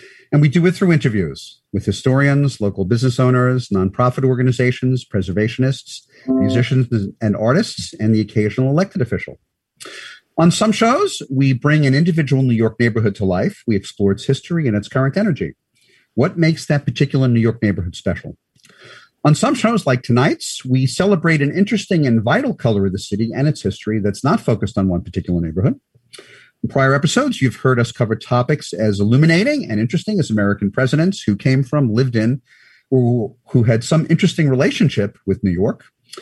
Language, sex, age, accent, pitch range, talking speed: English, male, 50-69, American, 110-160 Hz, 170 wpm